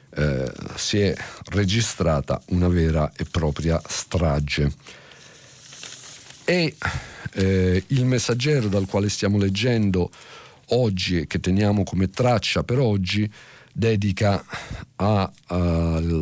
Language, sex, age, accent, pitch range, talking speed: Italian, male, 50-69, native, 95-125 Hz, 100 wpm